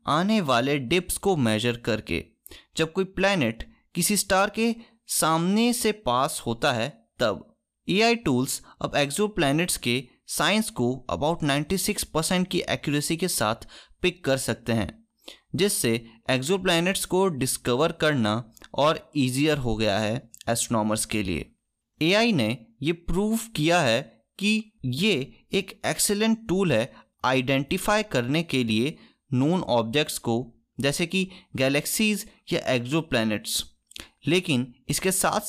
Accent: native